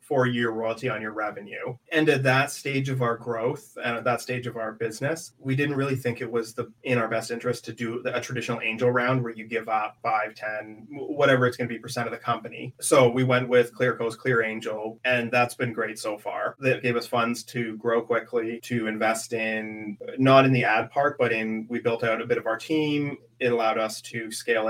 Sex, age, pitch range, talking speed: male, 30-49, 110-125 Hz, 230 wpm